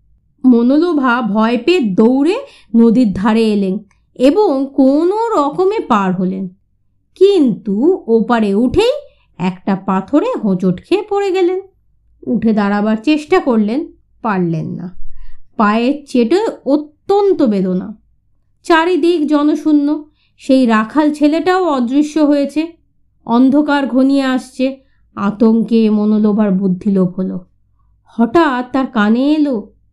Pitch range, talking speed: 205-315 Hz, 95 wpm